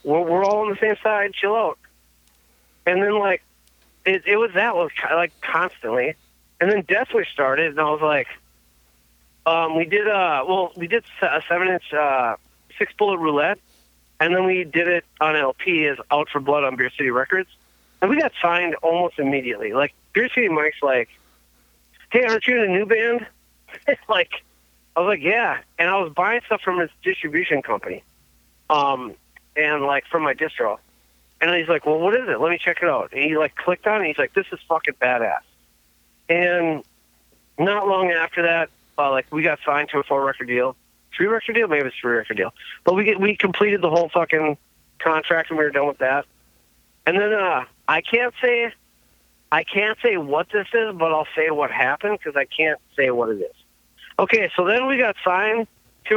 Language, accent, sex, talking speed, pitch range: English, American, male, 200 wpm, 140-210 Hz